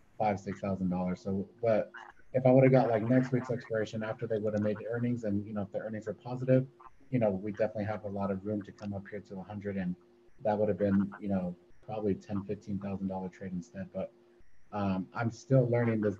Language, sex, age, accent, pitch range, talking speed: English, male, 30-49, American, 105-125 Hz, 235 wpm